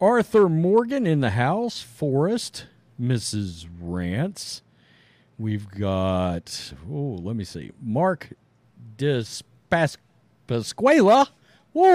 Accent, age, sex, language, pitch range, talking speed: American, 50-69, male, English, 120-190 Hz, 85 wpm